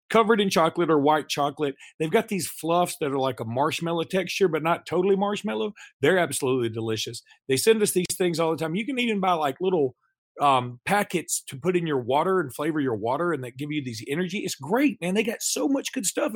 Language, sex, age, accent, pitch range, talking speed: English, male, 40-59, American, 145-180 Hz, 230 wpm